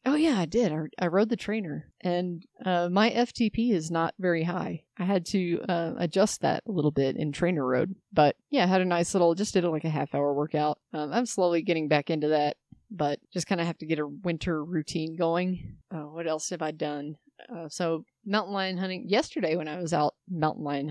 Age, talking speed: 30-49, 225 wpm